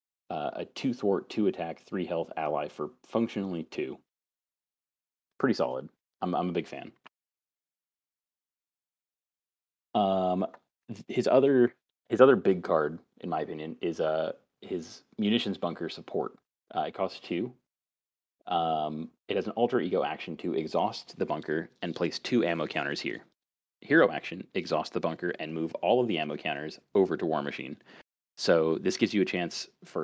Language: English